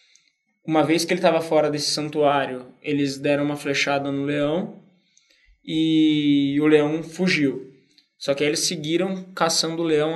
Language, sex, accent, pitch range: Portuguese, male, Brazilian, 140-160 Hz